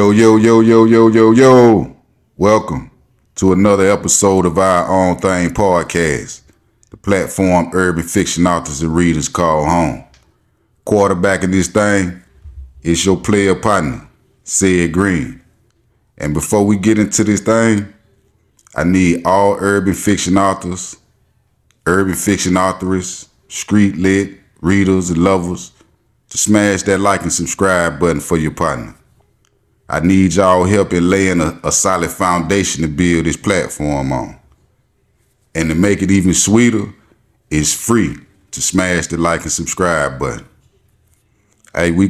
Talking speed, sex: 140 wpm, male